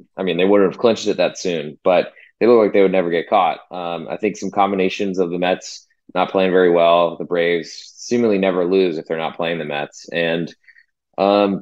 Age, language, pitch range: 20-39, English, 90-105 Hz